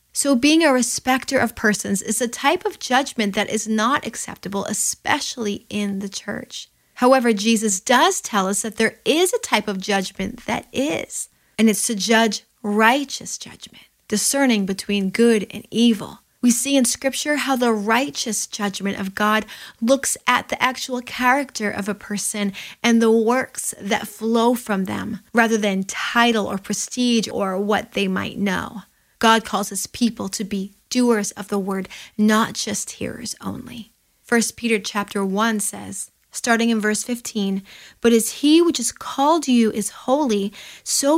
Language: English